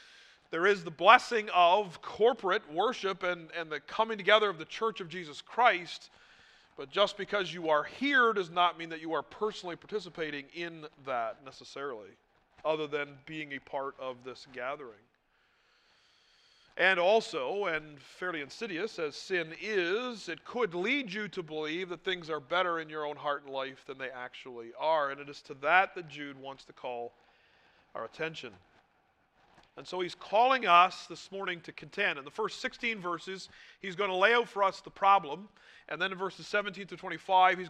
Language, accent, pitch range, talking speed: English, American, 155-205 Hz, 180 wpm